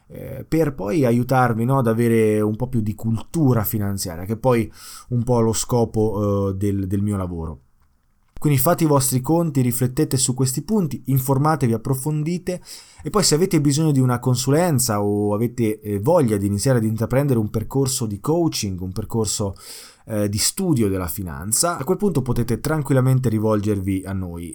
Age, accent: 20-39, native